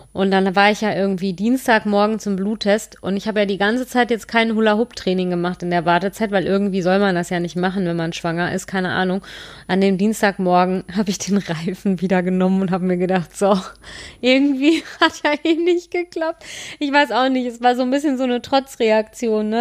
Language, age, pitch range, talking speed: German, 30-49, 185-220 Hz, 215 wpm